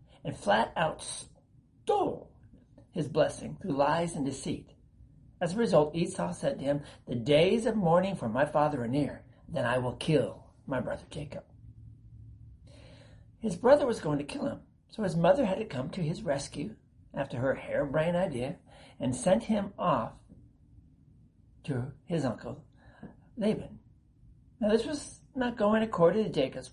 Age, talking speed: 60-79, 155 wpm